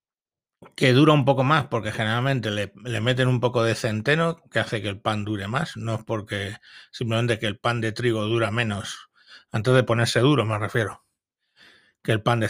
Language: Spanish